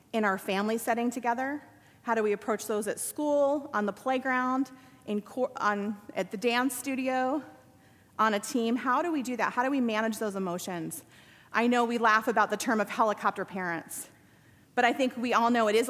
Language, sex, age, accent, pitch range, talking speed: English, female, 30-49, American, 210-255 Hz, 195 wpm